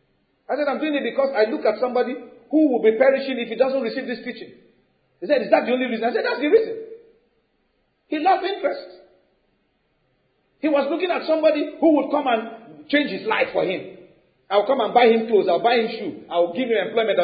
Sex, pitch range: male, 225-360 Hz